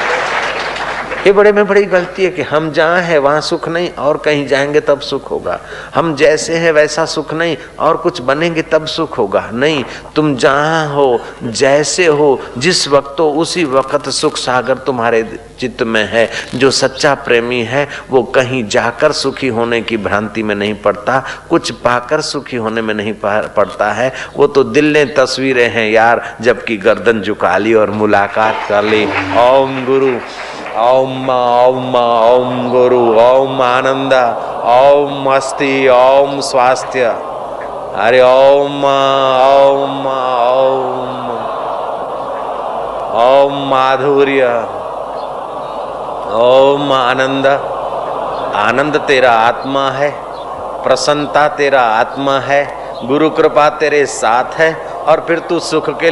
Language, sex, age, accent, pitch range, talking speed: Hindi, male, 50-69, native, 125-150 Hz, 130 wpm